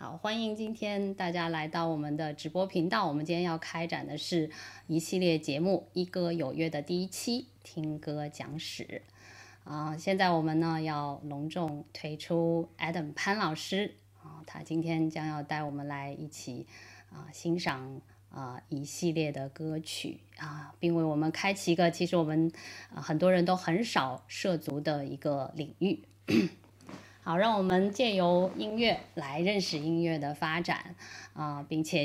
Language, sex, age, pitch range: Chinese, female, 20-39, 145-175 Hz